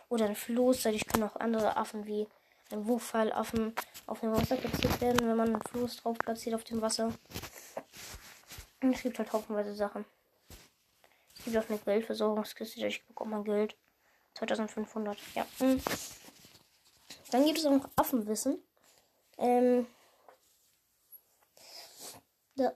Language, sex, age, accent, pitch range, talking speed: German, female, 10-29, German, 220-255 Hz, 130 wpm